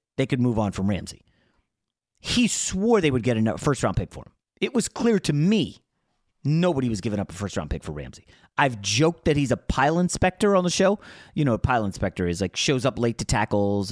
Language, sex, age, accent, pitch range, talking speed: English, male, 30-49, American, 110-170 Hz, 235 wpm